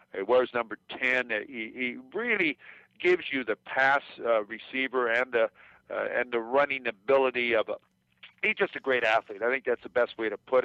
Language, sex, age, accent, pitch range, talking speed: English, male, 50-69, American, 120-145 Hz, 190 wpm